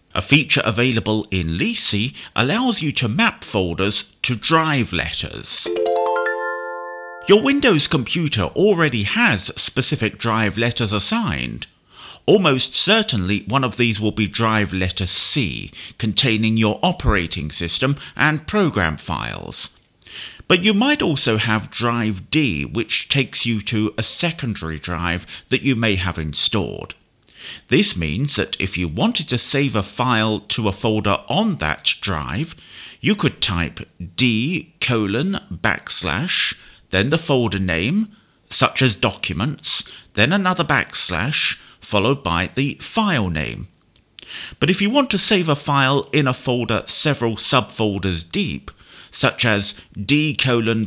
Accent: British